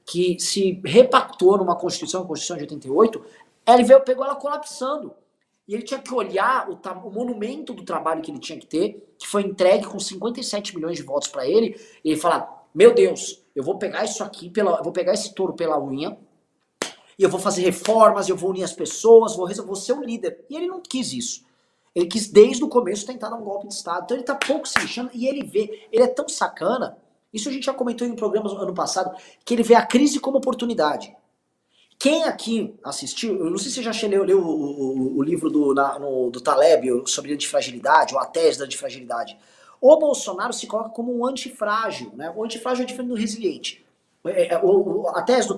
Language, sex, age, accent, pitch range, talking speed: Portuguese, male, 20-39, Brazilian, 185-255 Hz, 215 wpm